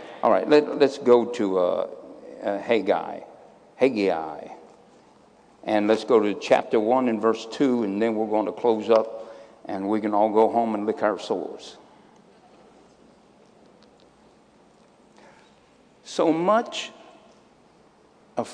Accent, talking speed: American, 125 wpm